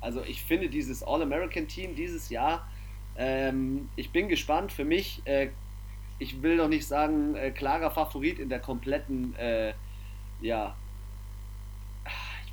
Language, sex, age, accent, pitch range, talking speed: German, male, 30-49, German, 100-150 Hz, 135 wpm